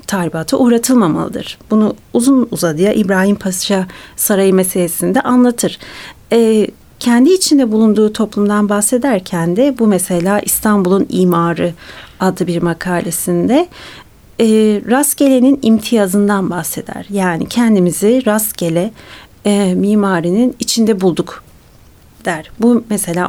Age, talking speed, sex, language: 40-59, 100 wpm, female, Turkish